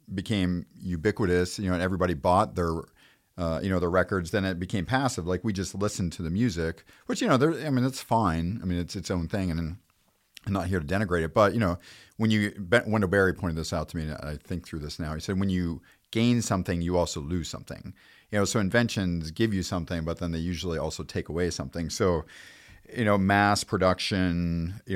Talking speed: 230 wpm